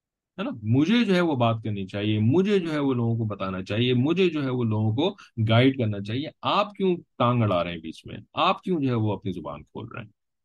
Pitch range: 105-130 Hz